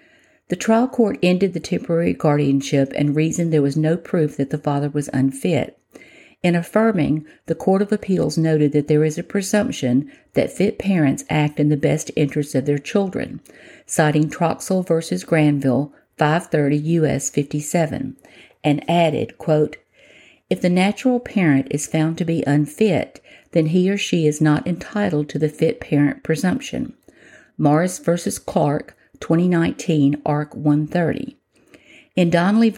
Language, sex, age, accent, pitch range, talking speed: English, female, 50-69, American, 150-180 Hz, 140 wpm